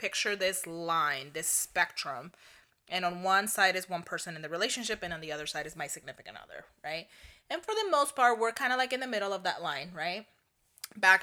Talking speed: 225 wpm